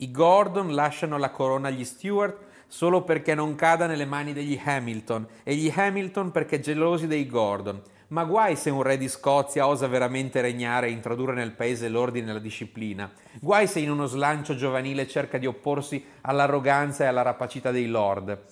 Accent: native